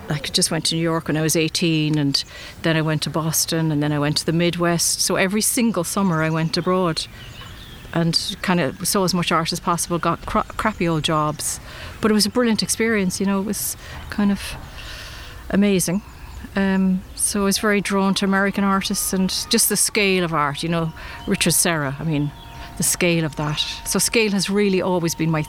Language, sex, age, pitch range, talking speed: English, female, 40-59, 160-195 Hz, 205 wpm